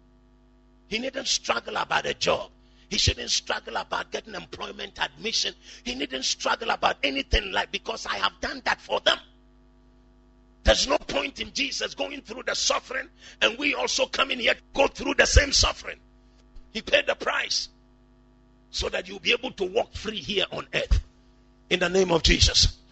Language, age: English, 50-69